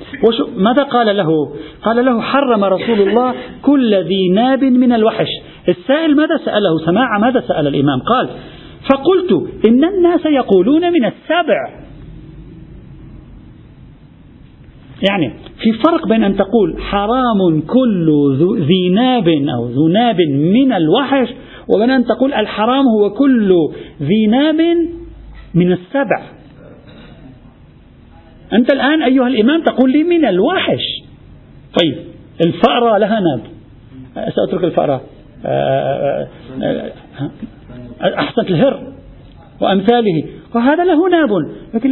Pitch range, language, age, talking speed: 185-270 Hz, Arabic, 50-69, 105 wpm